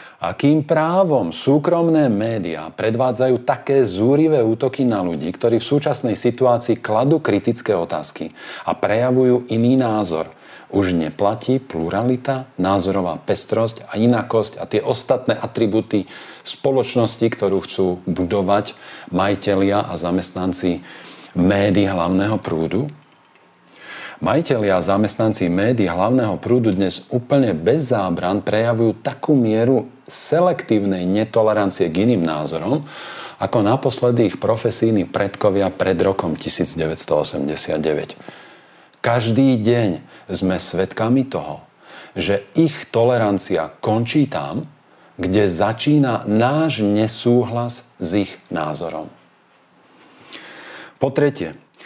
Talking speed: 100 wpm